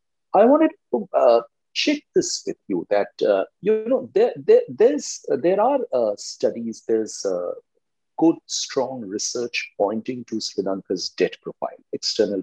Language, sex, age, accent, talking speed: English, male, 50-69, Indian, 150 wpm